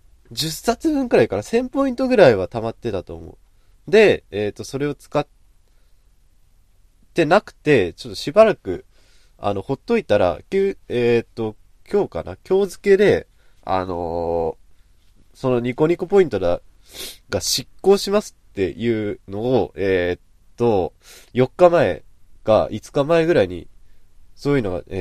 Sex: male